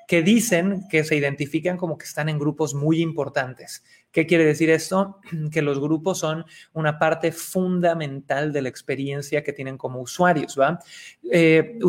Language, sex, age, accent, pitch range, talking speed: Spanish, male, 30-49, Mexican, 145-170 Hz, 160 wpm